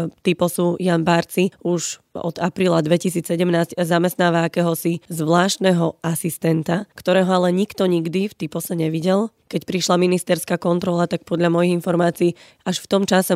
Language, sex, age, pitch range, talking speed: Slovak, female, 20-39, 165-180 Hz, 135 wpm